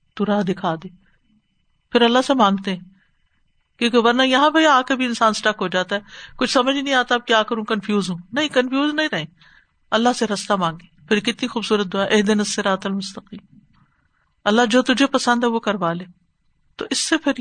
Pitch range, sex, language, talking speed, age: 200-260 Hz, female, Urdu, 195 wpm, 50-69